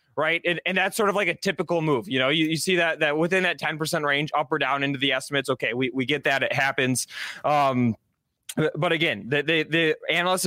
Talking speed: 240 wpm